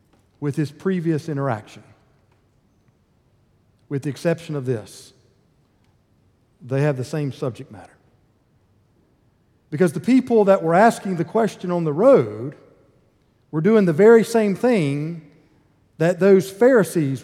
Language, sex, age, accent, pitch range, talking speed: English, male, 50-69, American, 120-170 Hz, 120 wpm